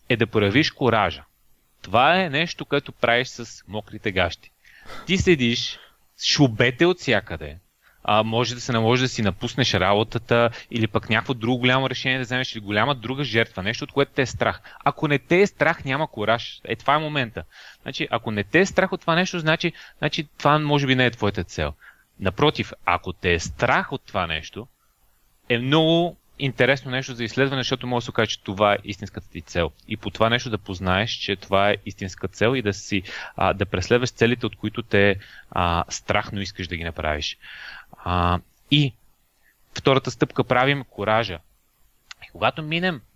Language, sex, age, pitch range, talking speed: Bulgarian, male, 30-49, 100-130 Hz, 180 wpm